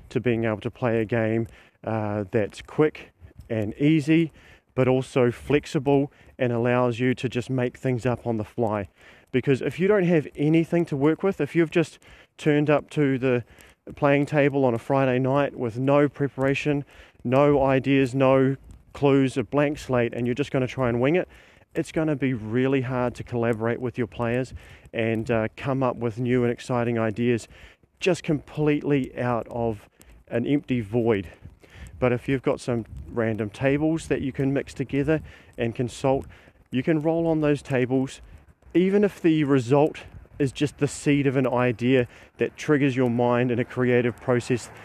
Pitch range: 120-145 Hz